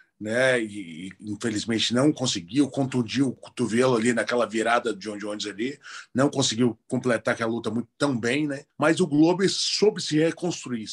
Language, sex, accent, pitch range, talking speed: Portuguese, male, Brazilian, 125-160 Hz, 170 wpm